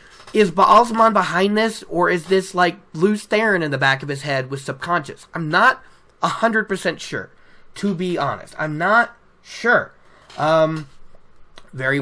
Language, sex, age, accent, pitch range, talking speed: English, male, 20-39, American, 150-215 Hz, 160 wpm